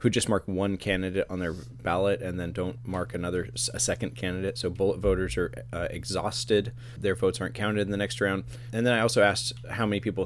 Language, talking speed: English, 220 wpm